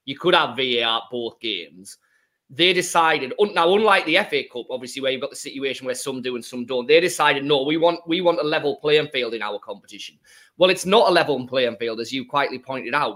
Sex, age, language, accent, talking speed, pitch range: male, 20-39, English, British, 235 wpm, 130-175 Hz